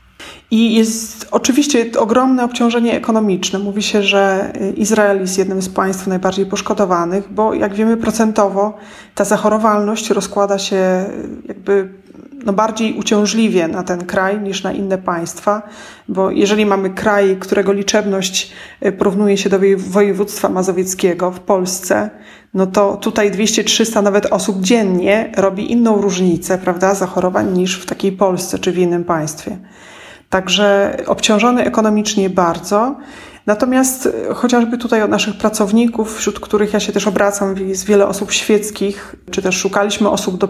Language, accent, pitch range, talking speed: Polish, native, 190-215 Hz, 140 wpm